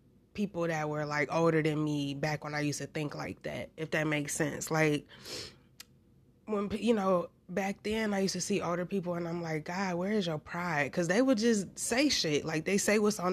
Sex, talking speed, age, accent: female, 225 wpm, 20-39, American